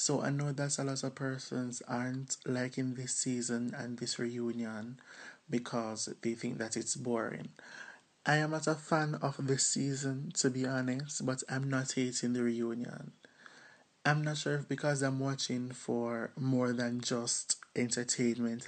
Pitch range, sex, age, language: 120-135 Hz, male, 20-39, English